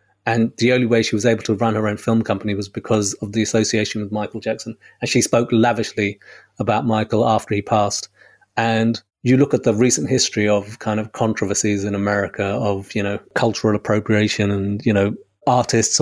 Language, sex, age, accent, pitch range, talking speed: English, male, 30-49, British, 105-120 Hz, 195 wpm